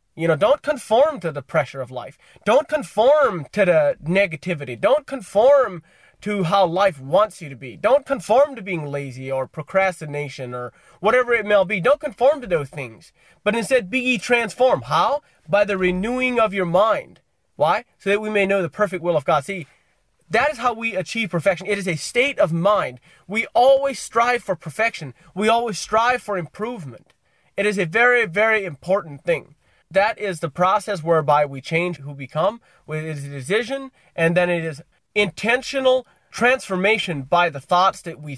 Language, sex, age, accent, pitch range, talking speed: English, male, 30-49, American, 155-225 Hz, 185 wpm